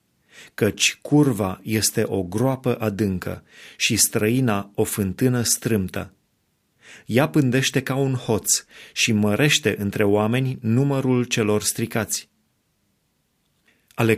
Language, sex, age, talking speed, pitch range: Romanian, male, 30-49, 100 wpm, 105-135 Hz